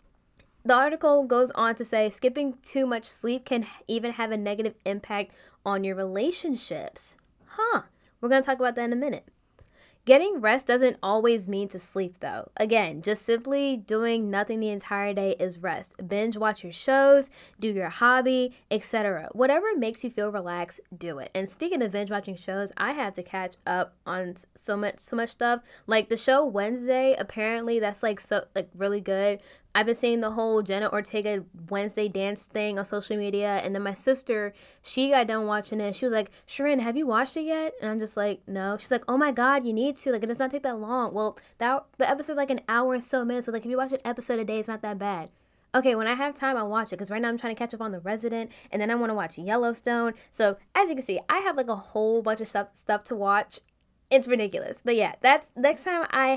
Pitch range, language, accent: 205-255 Hz, English, American